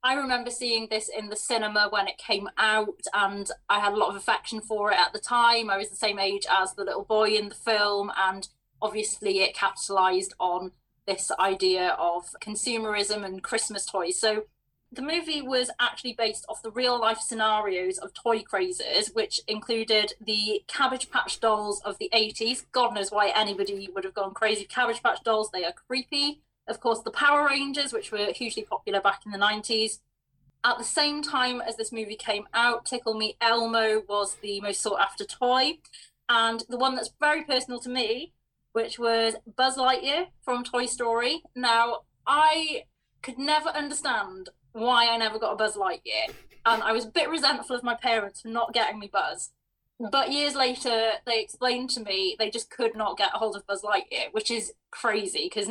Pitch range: 205-245 Hz